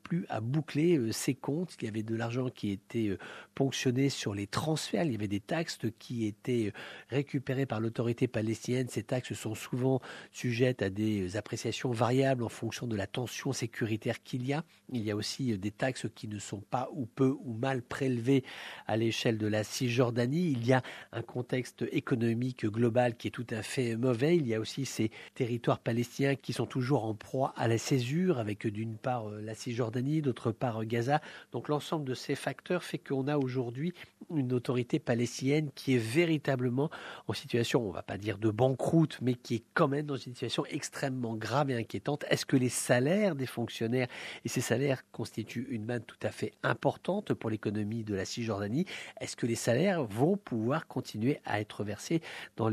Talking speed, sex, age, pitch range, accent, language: 190 wpm, male, 50-69, 115-145 Hz, French, English